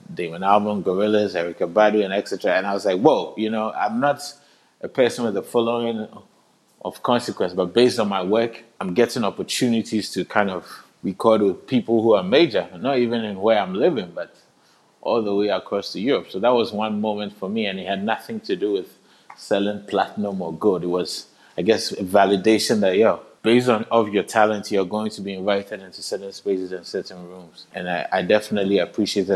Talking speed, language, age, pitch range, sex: 205 wpm, English, 20-39, 100-115 Hz, male